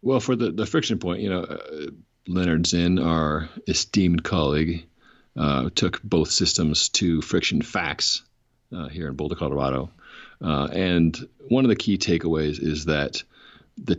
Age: 40-59